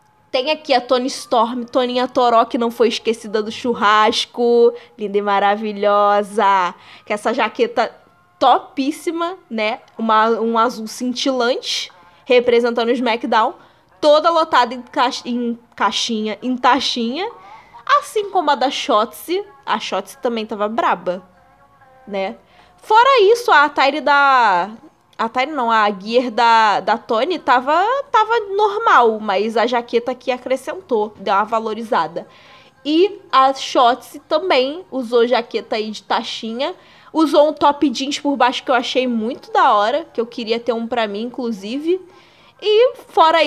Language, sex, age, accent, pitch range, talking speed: Portuguese, female, 10-29, Brazilian, 225-300 Hz, 140 wpm